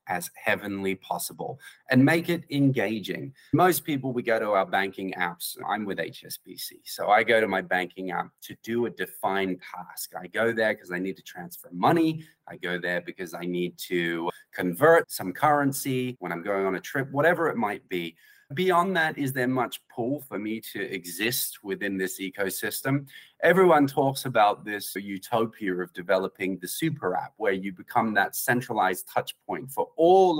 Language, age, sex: English, 30-49, male